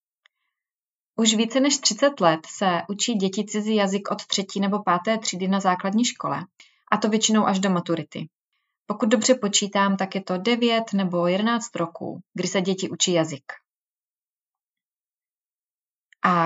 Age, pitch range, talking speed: 30-49, 185-220 Hz, 145 wpm